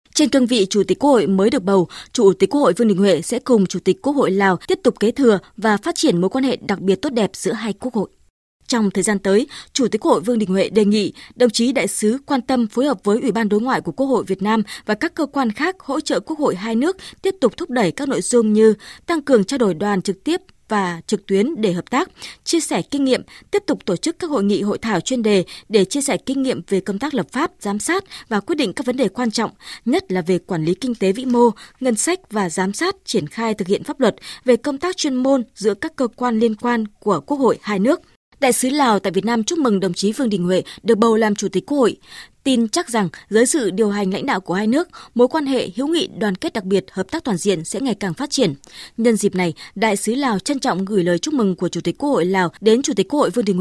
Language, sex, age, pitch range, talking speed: Vietnamese, female, 20-39, 200-270 Hz, 280 wpm